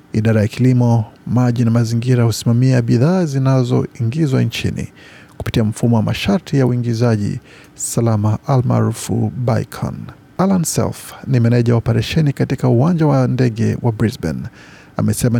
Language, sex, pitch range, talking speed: Swahili, male, 115-135 Hz, 115 wpm